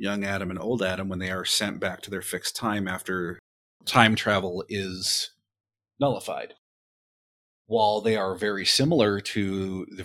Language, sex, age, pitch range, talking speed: English, male, 30-49, 95-115 Hz, 155 wpm